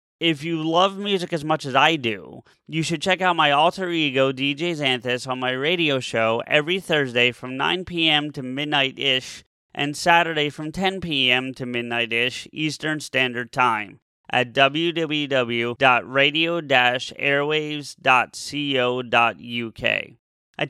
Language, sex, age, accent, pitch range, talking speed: English, male, 30-49, American, 130-165 Hz, 120 wpm